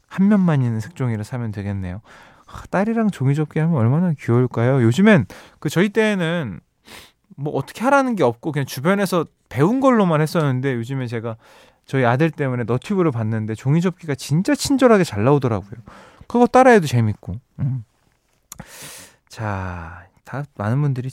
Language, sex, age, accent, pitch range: Korean, male, 20-39, native, 115-165 Hz